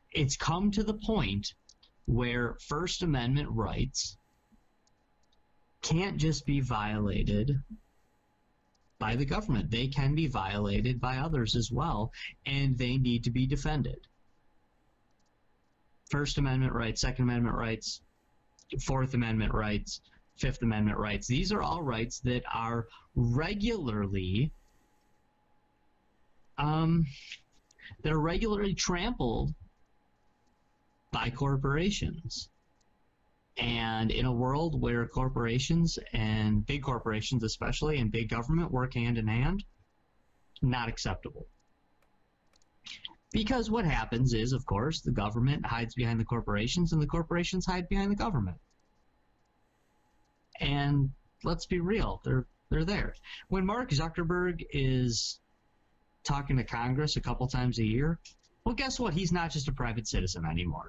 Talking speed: 120 wpm